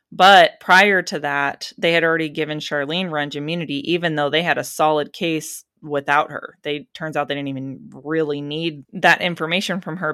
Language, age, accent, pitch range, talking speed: English, 20-39, American, 145-175 Hz, 190 wpm